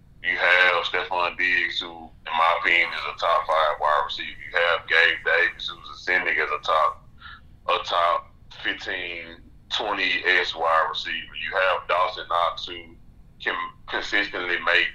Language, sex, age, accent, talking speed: English, male, 20-39, American, 155 wpm